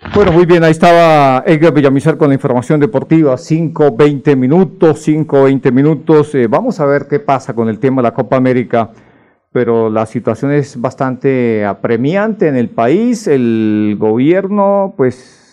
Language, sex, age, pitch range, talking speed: Spanish, male, 50-69, 115-150 Hz, 160 wpm